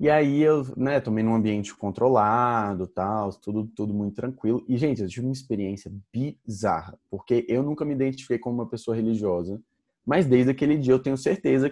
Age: 20-39